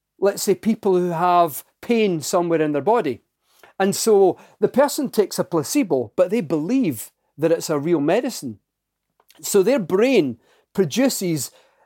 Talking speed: 145 wpm